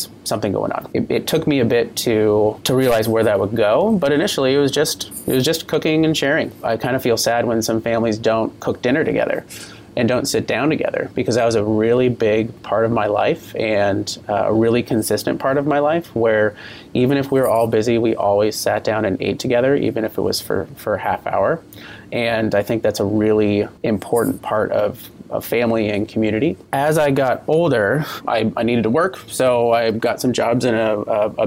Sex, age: male, 30-49